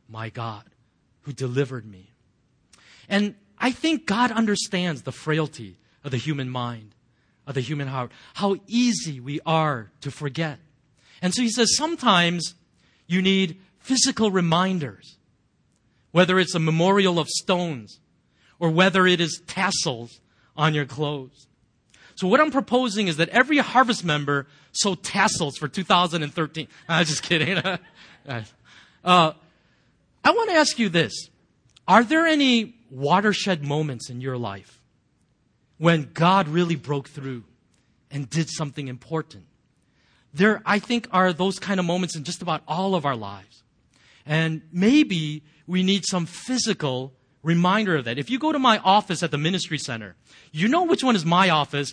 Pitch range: 135-190 Hz